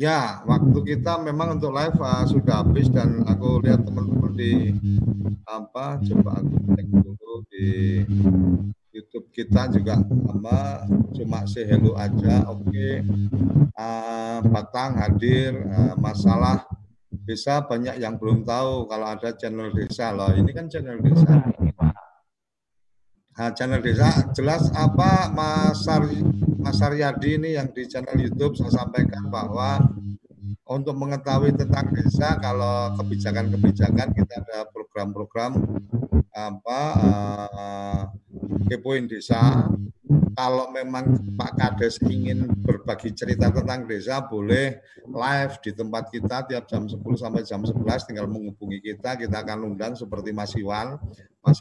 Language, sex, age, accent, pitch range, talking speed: Indonesian, male, 50-69, native, 100-130 Hz, 125 wpm